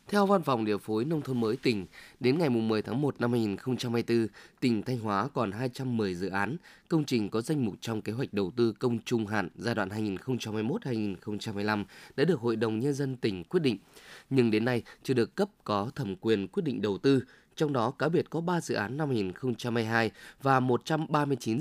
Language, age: Vietnamese, 20-39